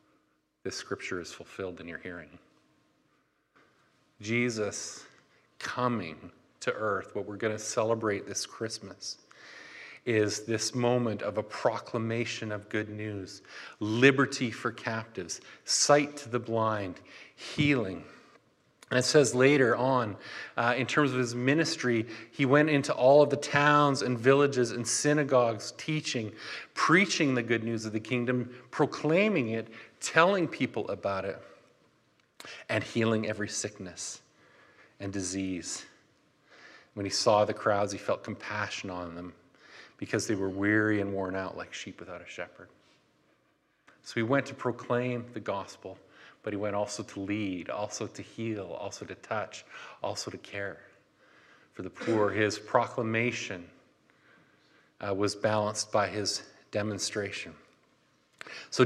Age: 40-59